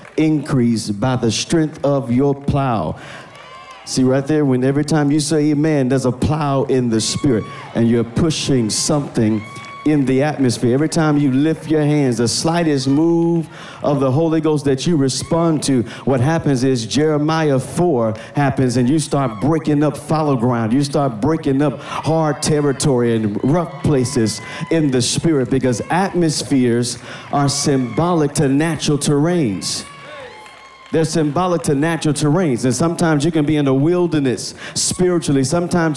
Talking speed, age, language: 155 wpm, 50-69, English